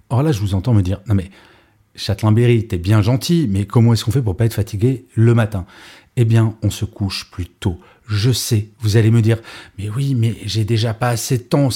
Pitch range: 105-140 Hz